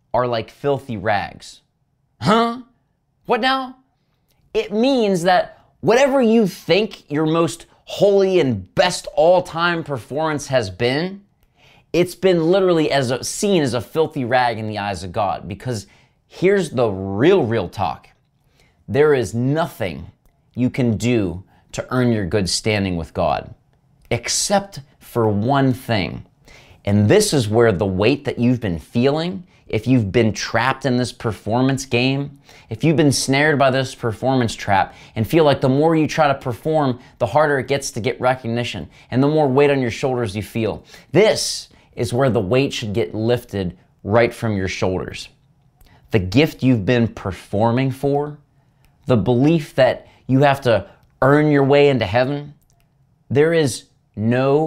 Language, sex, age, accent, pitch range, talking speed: English, male, 30-49, American, 115-150 Hz, 155 wpm